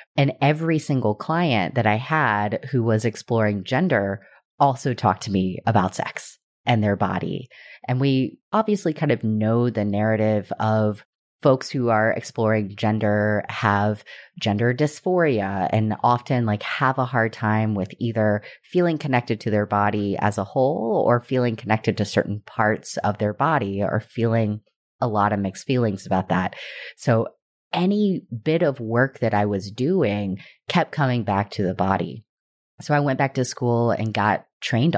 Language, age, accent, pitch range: English, 30-49, American, 105-130 Hz